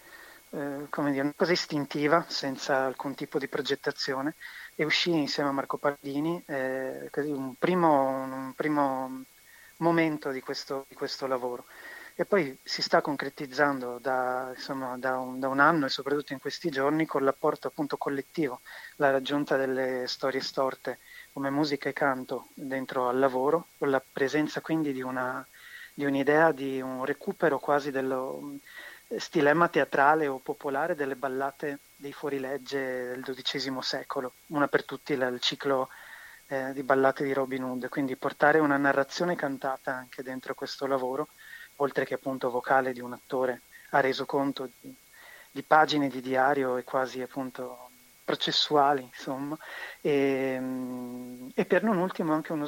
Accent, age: native, 30-49